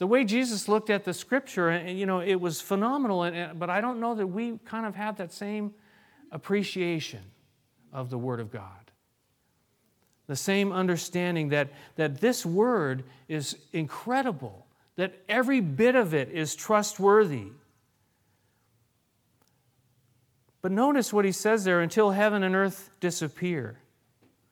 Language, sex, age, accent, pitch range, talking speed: English, male, 40-59, American, 135-210 Hz, 135 wpm